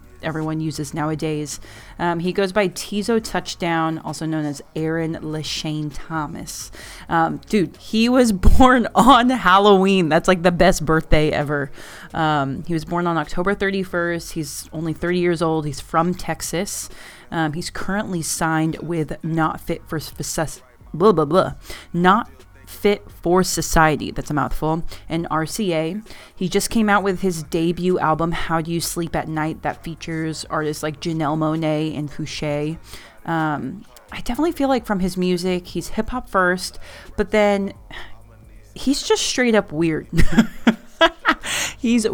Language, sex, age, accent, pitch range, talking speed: English, female, 20-39, American, 155-195 Hz, 150 wpm